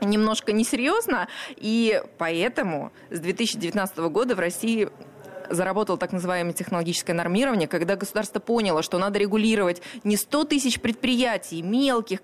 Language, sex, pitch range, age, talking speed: Russian, female, 175-240 Hz, 20-39, 125 wpm